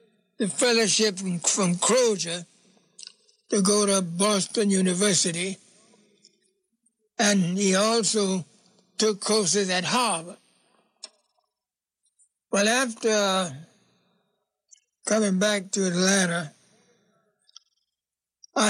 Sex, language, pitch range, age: male, English, 190-215 Hz, 60-79